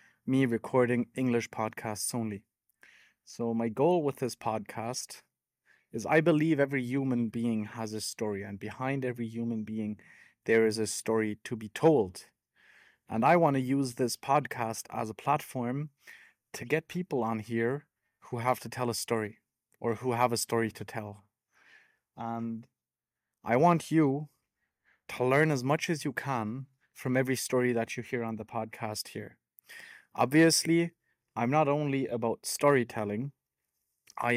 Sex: male